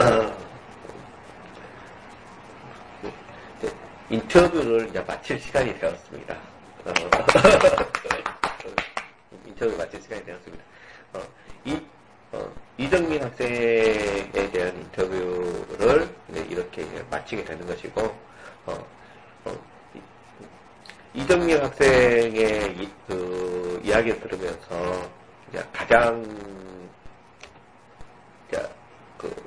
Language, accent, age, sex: Korean, native, 40-59, male